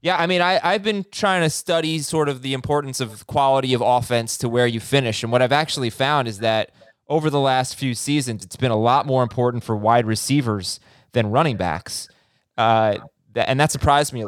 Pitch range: 120-155 Hz